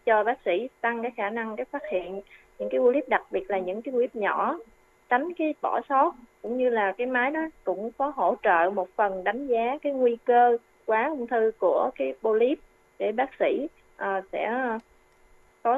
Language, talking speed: Vietnamese, 200 wpm